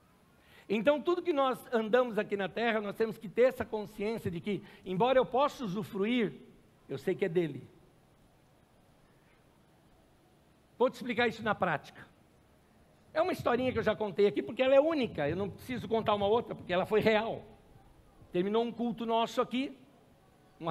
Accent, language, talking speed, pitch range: Brazilian, Portuguese, 170 wpm, 205-270 Hz